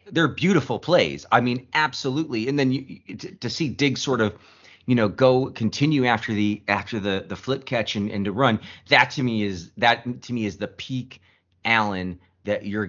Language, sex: English, male